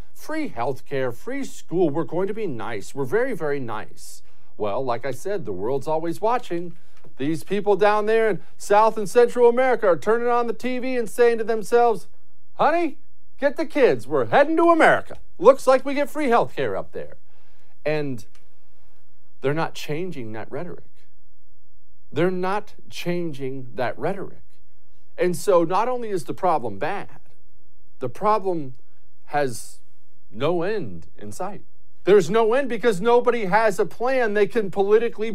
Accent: American